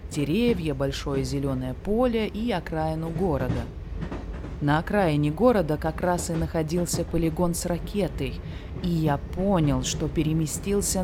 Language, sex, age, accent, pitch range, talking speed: Russian, female, 20-39, native, 150-200 Hz, 120 wpm